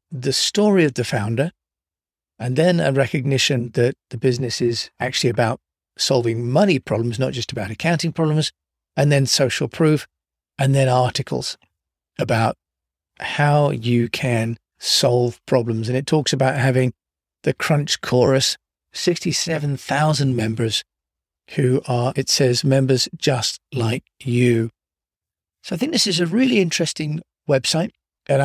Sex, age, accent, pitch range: male, 40-59, British, 120-155 Hz